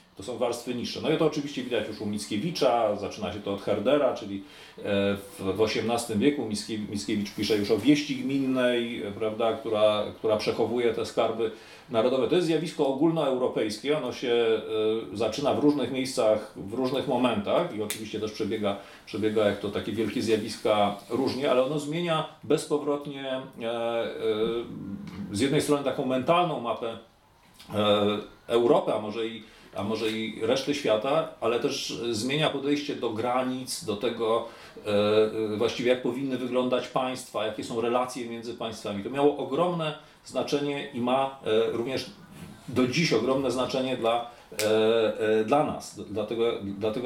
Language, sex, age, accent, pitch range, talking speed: Polish, male, 40-59, native, 110-135 Hz, 140 wpm